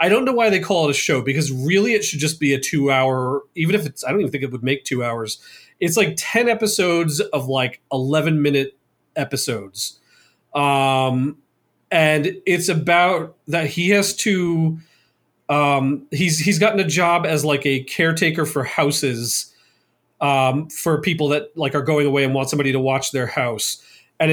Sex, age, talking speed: male, 30-49, 185 wpm